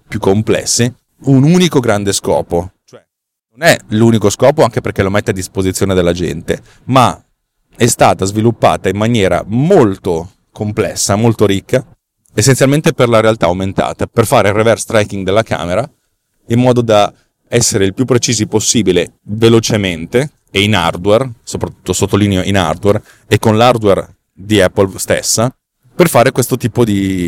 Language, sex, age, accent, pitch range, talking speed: Italian, male, 30-49, native, 100-125 Hz, 150 wpm